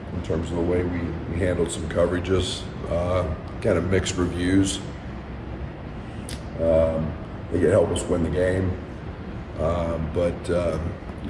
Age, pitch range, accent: 40-59, 80-95 Hz, American